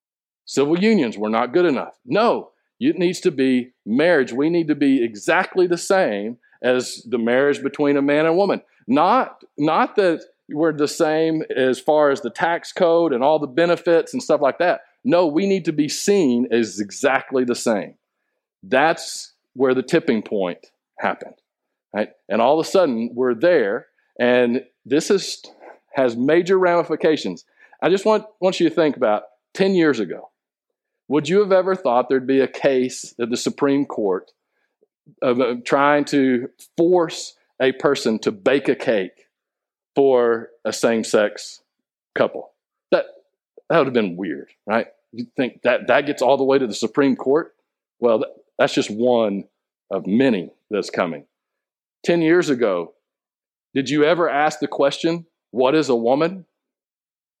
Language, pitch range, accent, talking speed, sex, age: English, 125-170 Hz, American, 165 wpm, male, 50-69